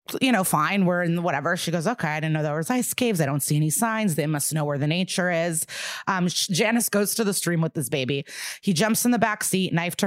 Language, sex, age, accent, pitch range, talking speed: English, female, 30-49, American, 160-200 Hz, 270 wpm